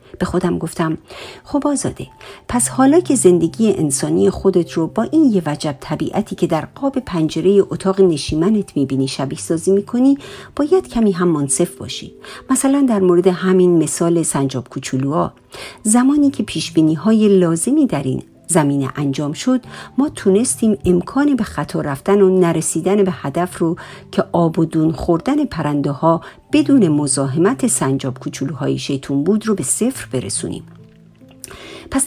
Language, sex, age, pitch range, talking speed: Persian, female, 50-69, 160-235 Hz, 145 wpm